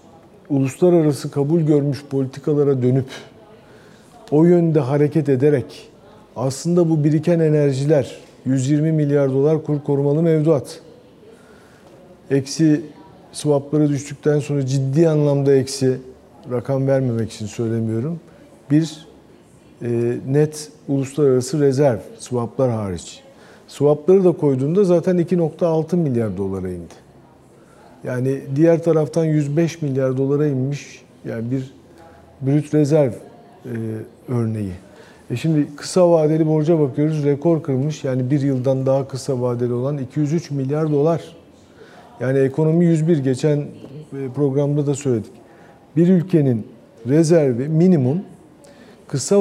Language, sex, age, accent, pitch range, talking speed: Turkish, male, 50-69, native, 130-160 Hz, 105 wpm